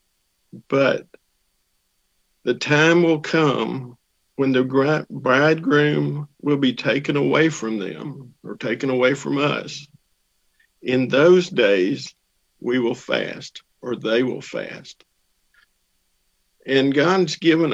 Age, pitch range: 50-69, 115-145 Hz